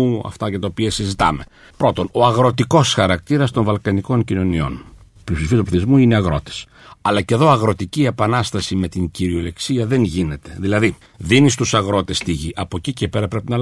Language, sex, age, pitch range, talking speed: English, male, 60-79, 95-130 Hz, 170 wpm